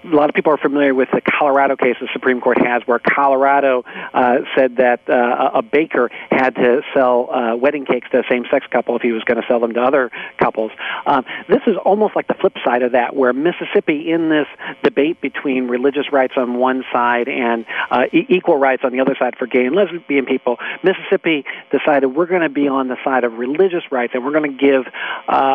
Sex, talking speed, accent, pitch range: male, 220 wpm, American, 125-145 Hz